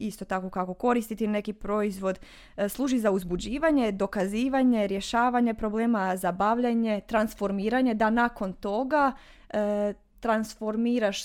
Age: 20-39